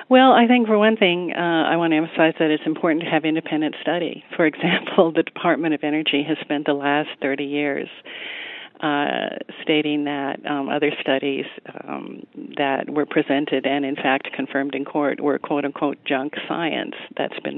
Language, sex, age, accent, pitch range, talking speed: English, female, 50-69, American, 140-165 Hz, 180 wpm